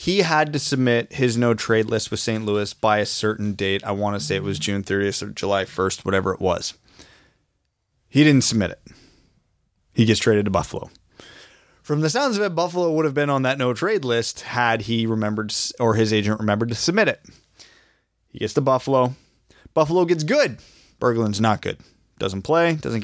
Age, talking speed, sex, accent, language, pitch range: 20-39, 190 wpm, male, American, English, 105-125 Hz